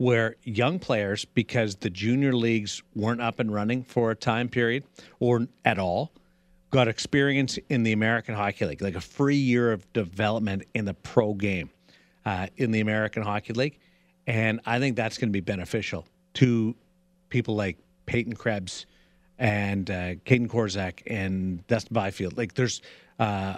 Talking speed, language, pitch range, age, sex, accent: 165 wpm, English, 100-125 Hz, 50-69, male, American